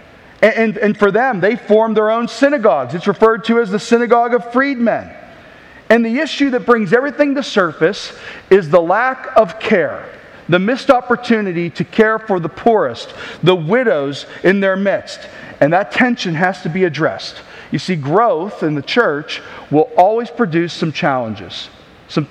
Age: 40-59